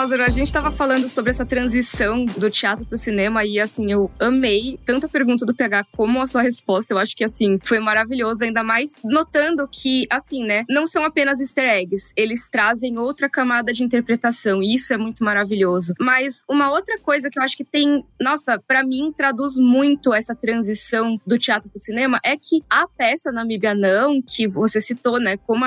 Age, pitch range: 20-39, 220-275 Hz